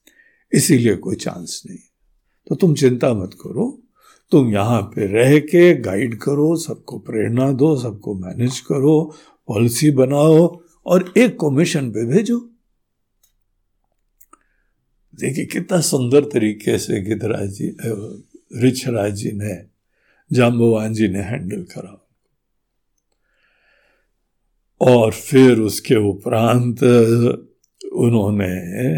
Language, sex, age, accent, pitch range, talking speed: Hindi, male, 60-79, native, 115-185 Hz, 95 wpm